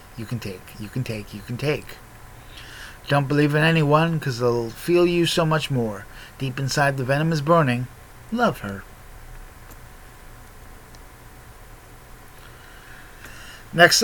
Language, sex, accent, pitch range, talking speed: English, male, American, 115-160 Hz, 125 wpm